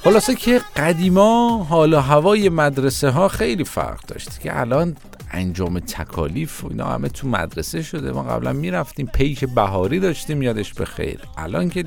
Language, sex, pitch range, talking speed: Persian, male, 90-155 Hz, 145 wpm